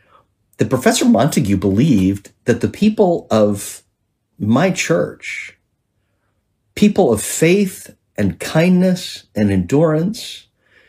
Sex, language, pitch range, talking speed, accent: male, English, 95-125 Hz, 95 wpm, American